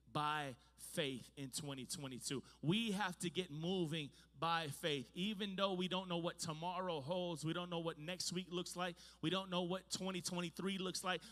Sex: male